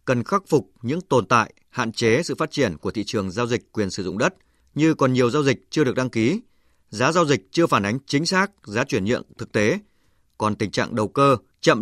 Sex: male